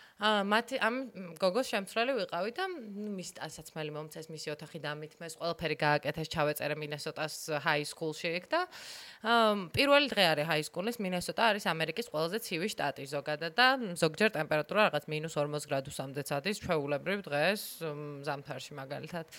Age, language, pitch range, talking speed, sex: 20-39, English, 150-220 Hz, 100 wpm, female